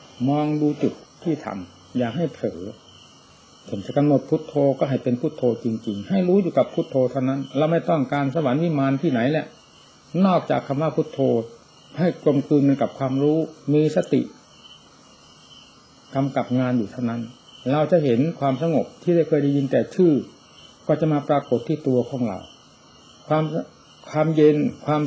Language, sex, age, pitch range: Thai, male, 60-79, 125-155 Hz